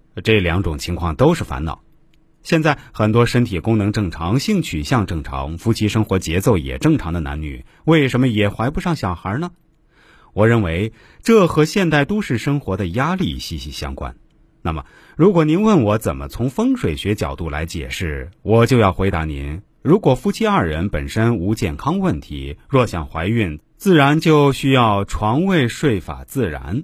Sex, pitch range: male, 85-140 Hz